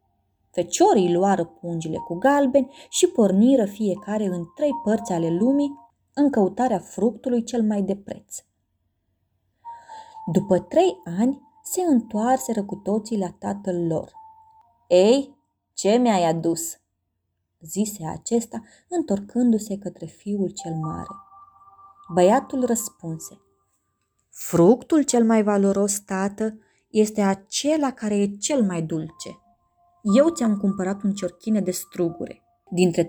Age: 20-39